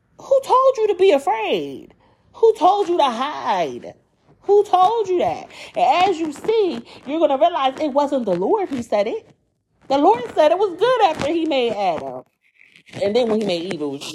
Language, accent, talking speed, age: English, American, 205 wpm, 30-49